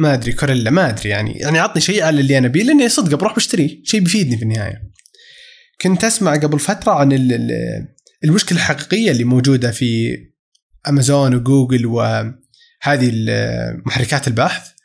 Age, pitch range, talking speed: 20-39, 130-185 Hz, 145 wpm